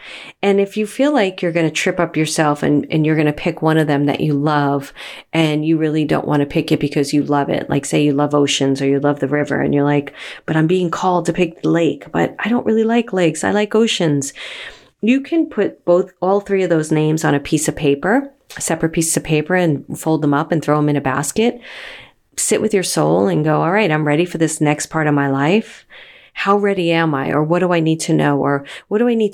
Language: English